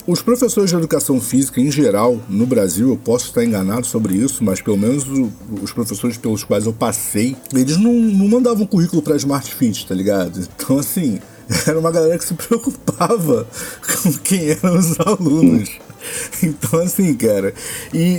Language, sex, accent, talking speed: Portuguese, male, Brazilian, 170 wpm